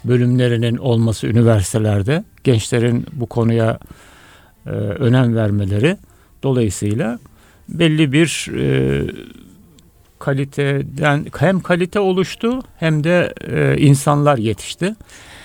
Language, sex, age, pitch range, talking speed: Turkish, male, 60-79, 115-155 Hz, 85 wpm